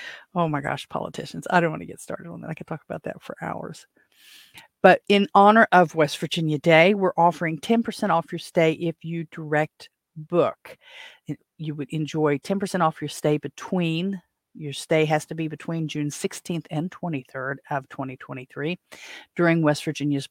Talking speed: 175 wpm